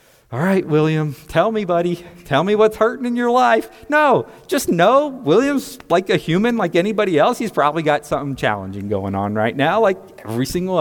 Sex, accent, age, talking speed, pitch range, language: male, American, 40-59, 195 wpm, 110-175 Hz, English